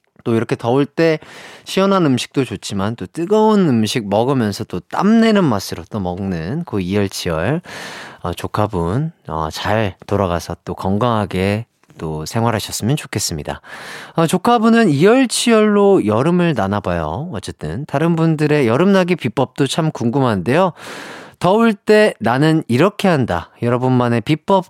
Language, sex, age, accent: Korean, male, 30-49, native